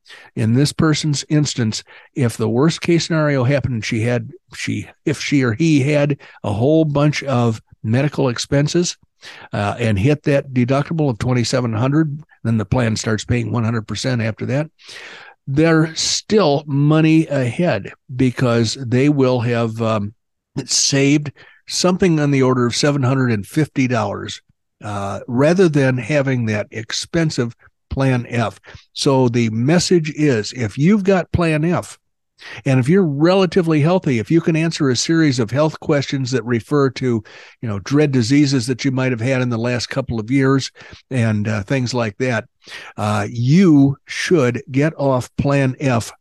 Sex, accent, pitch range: male, American, 120-150 Hz